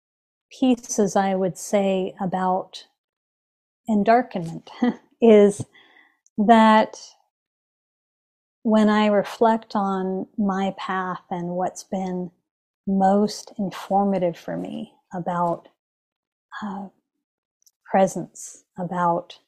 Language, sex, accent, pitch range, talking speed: English, female, American, 180-215 Hz, 75 wpm